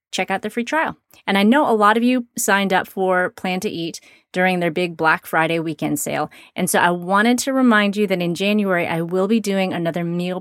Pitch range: 170-215 Hz